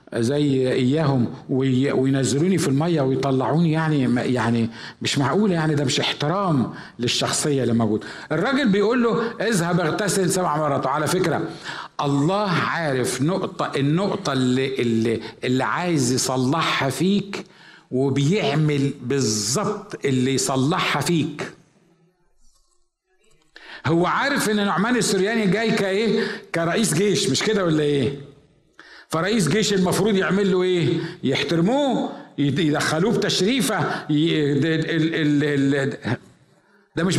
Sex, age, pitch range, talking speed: male, 50-69, 140-200 Hz, 105 wpm